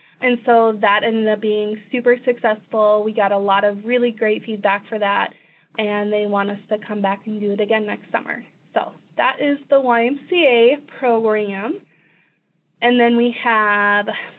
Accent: American